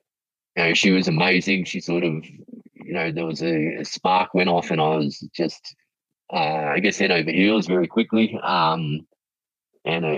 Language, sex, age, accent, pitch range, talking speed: English, male, 30-49, Australian, 80-95 Hz, 185 wpm